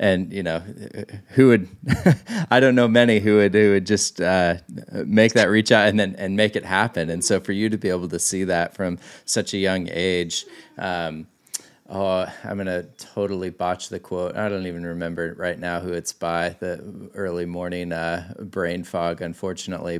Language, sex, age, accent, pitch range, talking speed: English, male, 30-49, American, 85-110 Hz, 190 wpm